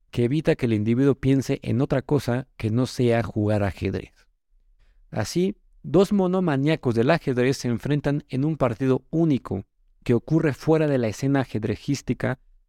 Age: 50-69